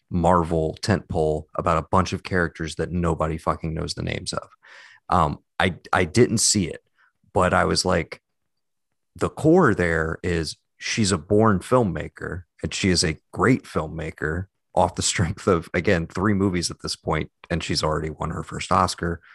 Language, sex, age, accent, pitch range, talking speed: English, male, 30-49, American, 90-115 Hz, 170 wpm